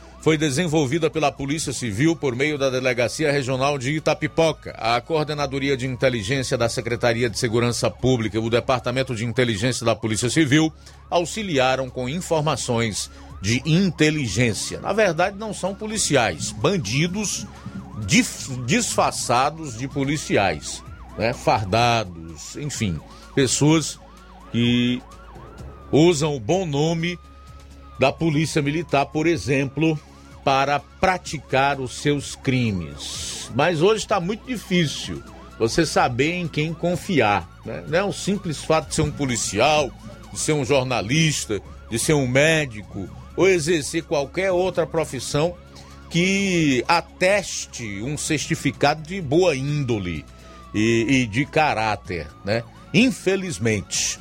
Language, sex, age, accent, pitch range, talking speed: Portuguese, male, 50-69, Brazilian, 115-160 Hz, 120 wpm